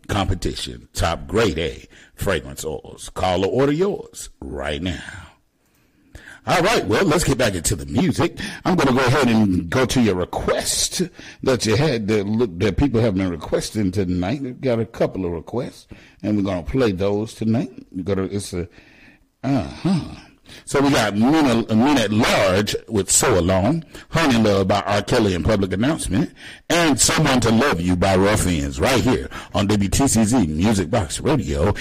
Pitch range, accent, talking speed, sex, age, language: 85-110 Hz, American, 170 wpm, male, 50-69, English